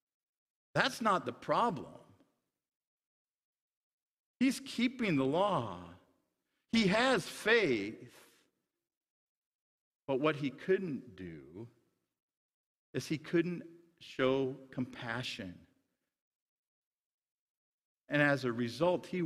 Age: 50-69